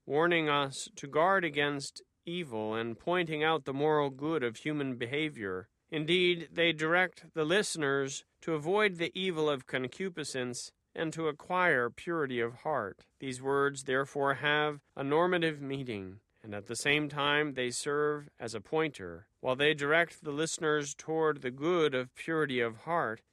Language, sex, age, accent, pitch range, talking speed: English, male, 40-59, American, 130-165 Hz, 155 wpm